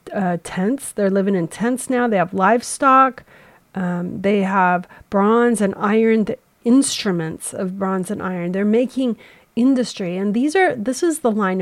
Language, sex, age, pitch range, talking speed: English, female, 40-59, 190-230 Hz, 160 wpm